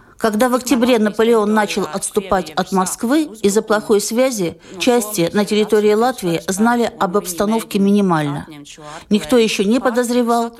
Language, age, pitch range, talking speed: Russian, 50-69, 180-230 Hz, 130 wpm